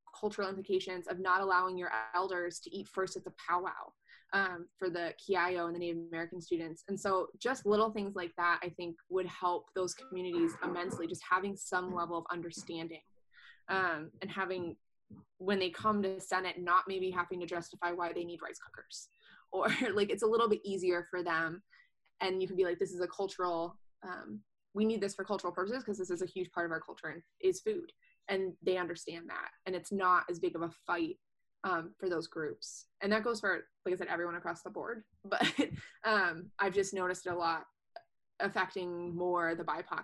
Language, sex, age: English, female, 20-39